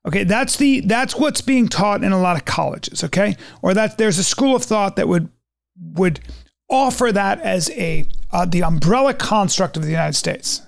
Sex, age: male, 40-59